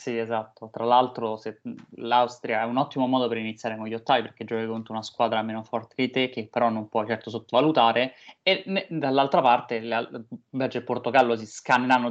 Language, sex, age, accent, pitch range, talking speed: Italian, male, 20-39, native, 115-135 Hz, 210 wpm